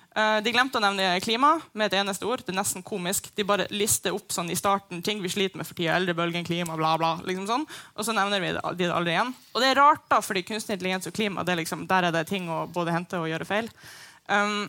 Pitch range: 180-215 Hz